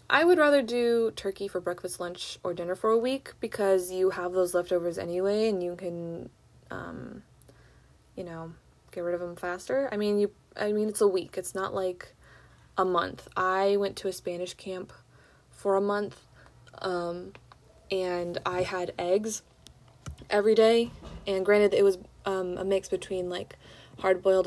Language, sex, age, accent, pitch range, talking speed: English, female, 20-39, American, 180-230 Hz, 170 wpm